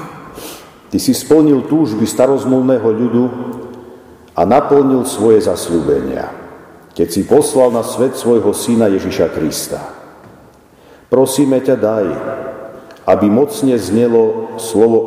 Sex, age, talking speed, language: male, 50-69, 105 wpm, Slovak